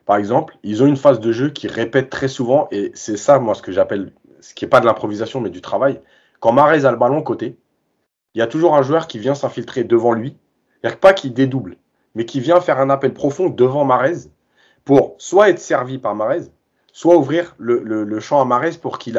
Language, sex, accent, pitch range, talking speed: French, male, French, 115-170 Hz, 235 wpm